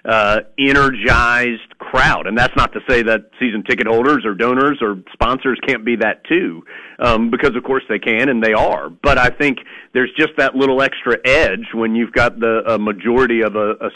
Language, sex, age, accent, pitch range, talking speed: English, male, 40-59, American, 115-135 Hz, 200 wpm